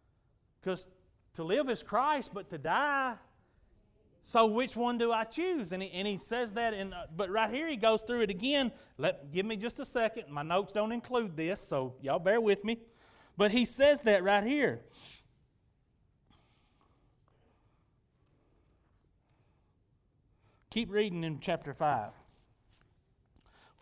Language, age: English, 30-49